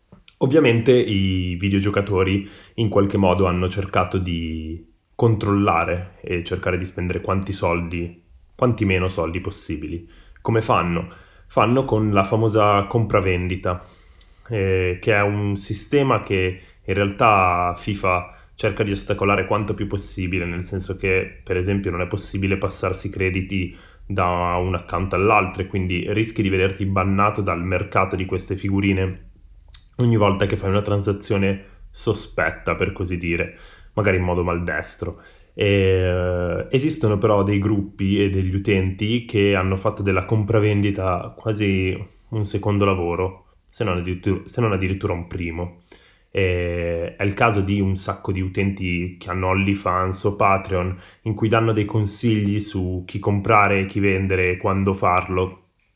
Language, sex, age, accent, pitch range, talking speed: Italian, male, 20-39, native, 90-100 Hz, 145 wpm